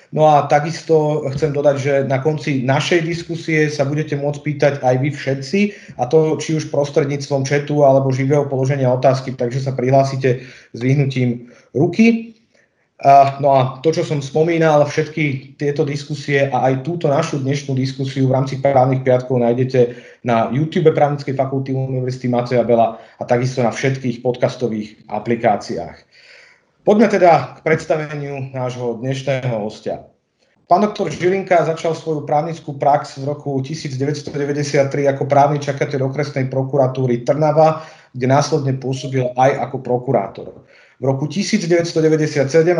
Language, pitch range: Slovak, 130-155 Hz